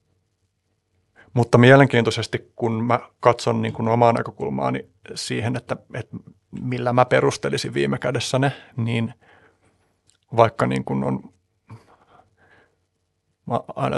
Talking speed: 105 wpm